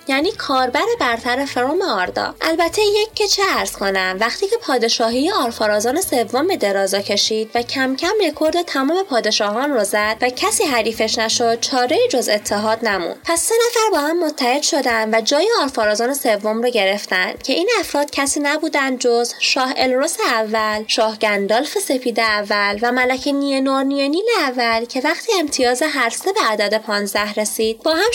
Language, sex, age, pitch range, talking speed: Persian, female, 20-39, 220-330 Hz, 160 wpm